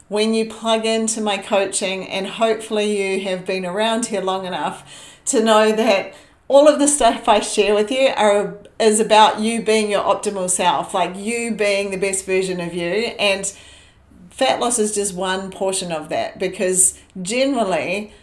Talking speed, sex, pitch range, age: 175 wpm, female, 180-220 Hz, 40-59